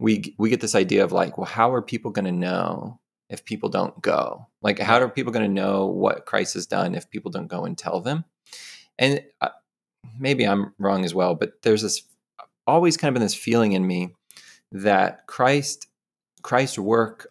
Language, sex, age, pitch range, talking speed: English, male, 30-49, 90-115 Hz, 200 wpm